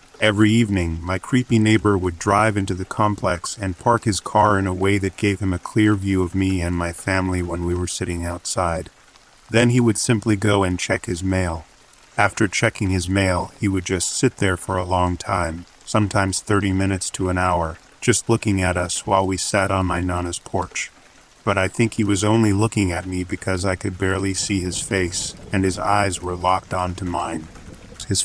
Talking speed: 205 wpm